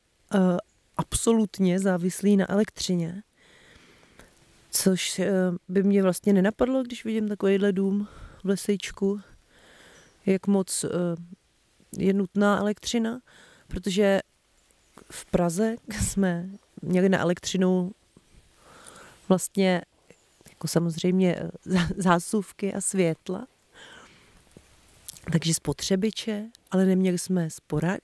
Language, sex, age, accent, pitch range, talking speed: Czech, female, 30-49, native, 175-205 Hz, 85 wpm